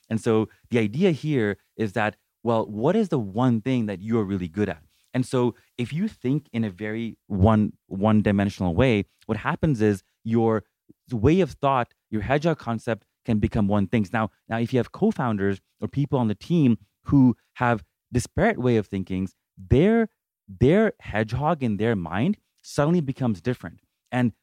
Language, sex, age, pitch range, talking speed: English, male, 30-49, 105-135 Hz, 175 wpm